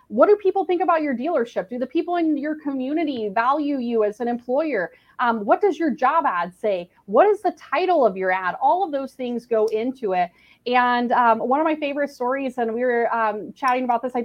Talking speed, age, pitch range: 225 wpm, 30-49, 210-285 Hz